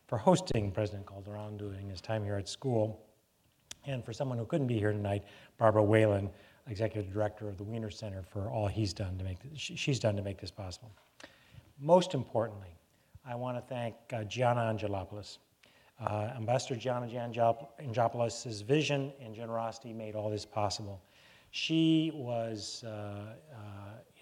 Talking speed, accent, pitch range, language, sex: 155 wpm, American, 105-135 Hz, English, male